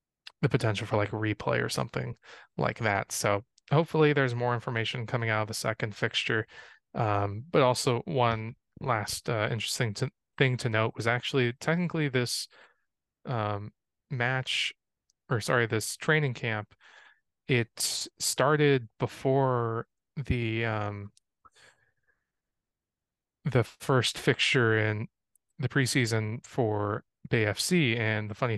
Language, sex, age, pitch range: English, male, 20-39, 110-125 Hz